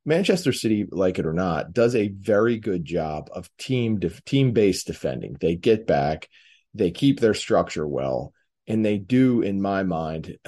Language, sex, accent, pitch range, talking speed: English, male, American, 90-120 Hz, 185 wpm